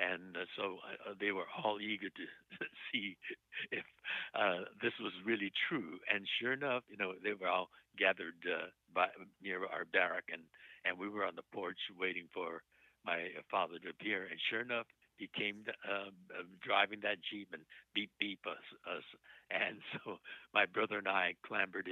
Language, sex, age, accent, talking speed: English, male, 60-79, American, 170 wpm